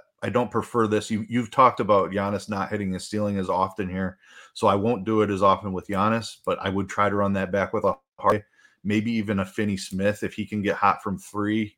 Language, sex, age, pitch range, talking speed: English, male, 30-49, 95-110 Hz, 245 wpm